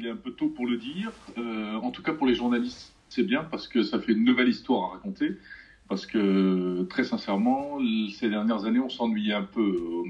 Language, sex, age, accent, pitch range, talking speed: French, male, 40-59, French, 100-125 Hz, 230 wpm